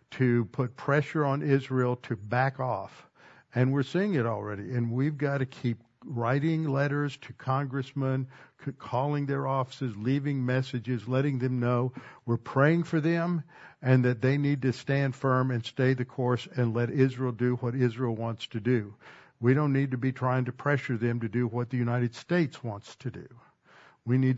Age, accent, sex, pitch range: 60-79, American, male, 120-135 Hz